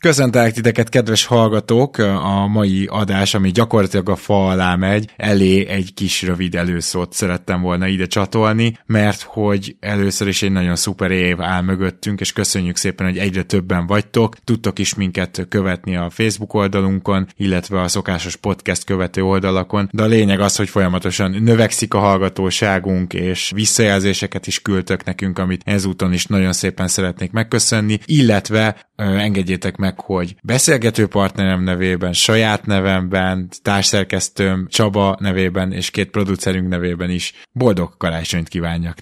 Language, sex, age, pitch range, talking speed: Hungarian, male, 20-39, 90-105 Hz, 145 wpm